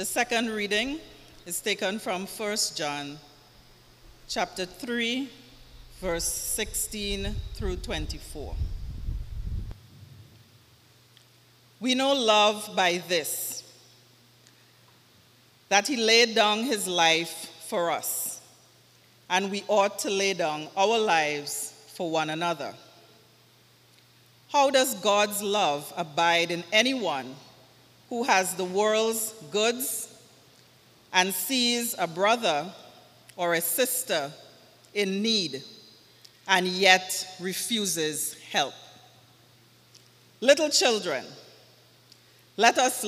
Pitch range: 155-220 Hz